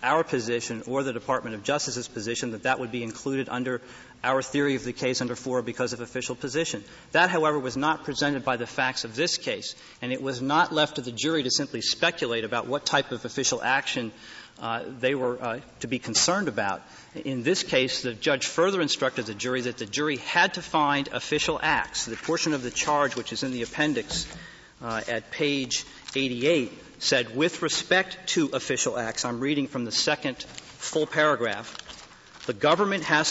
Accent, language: American, English